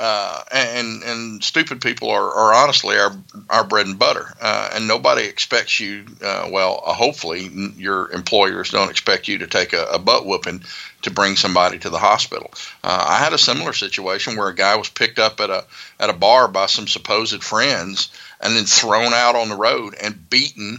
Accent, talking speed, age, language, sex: American, 200 wpm, 50-69, English, male